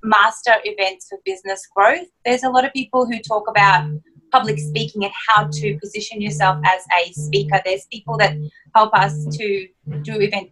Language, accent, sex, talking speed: English, Australian, female, 175 wpm